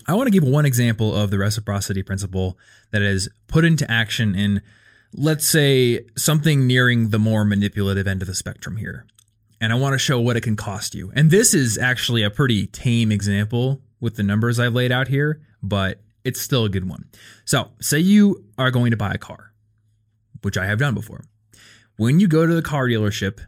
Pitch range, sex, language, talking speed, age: 110-145 Hz, male, English, 205 wpm, 20-39